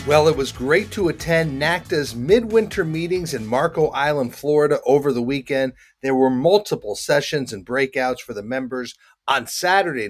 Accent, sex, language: American, male, English